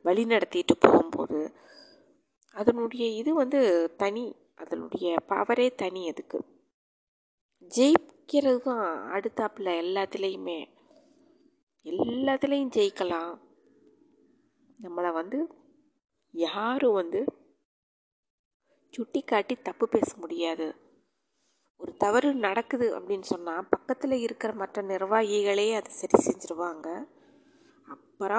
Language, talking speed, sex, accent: Tamil, 80 wpm, female, native